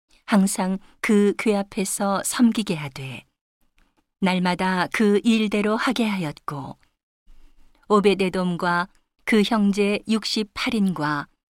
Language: Korean